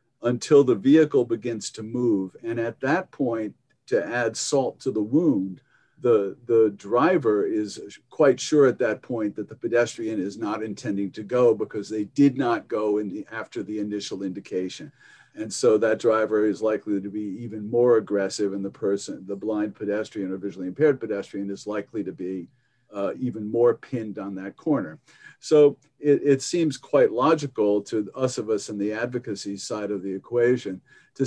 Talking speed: 180 wpm